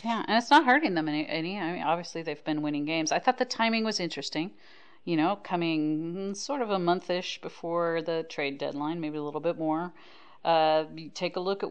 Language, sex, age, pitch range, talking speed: English, female, 40-59, 150-195 Hz, 220 wpm